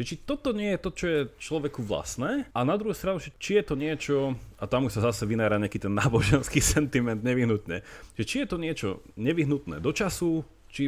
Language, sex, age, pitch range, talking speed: Slovak, male, 30-49, 100-135 Hz, 205 wpm